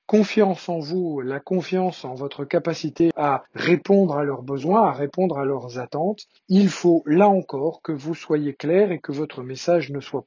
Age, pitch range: 40-59, 140-180 Hz